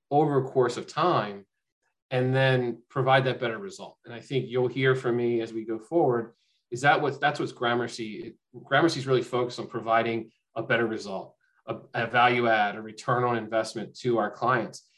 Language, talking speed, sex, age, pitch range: English, 190 wpm, male, 30-49, 115-130 Hz